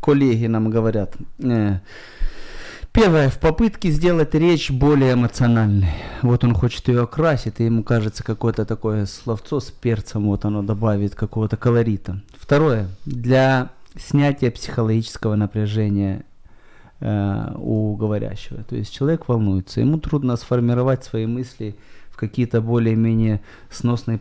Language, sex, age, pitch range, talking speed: Ukrainian, male, 20-39, 110-140 Hz, 115 wpm